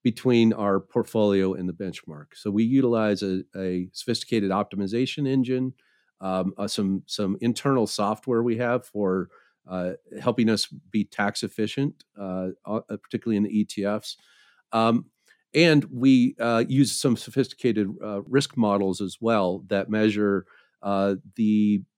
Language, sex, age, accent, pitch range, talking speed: English, male, 50-69, American, 100-125 Hz, 135 wpm